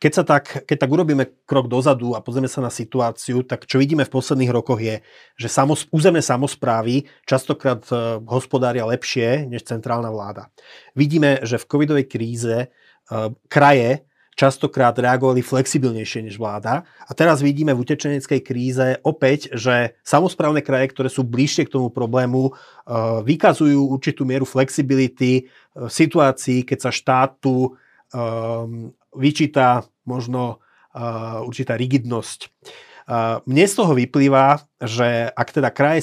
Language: Slovak